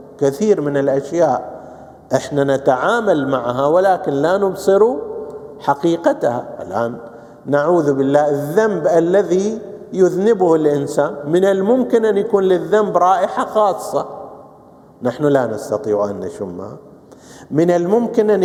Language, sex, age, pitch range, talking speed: Arabic, male, 50-69, 140-185 Hz, 105 wpm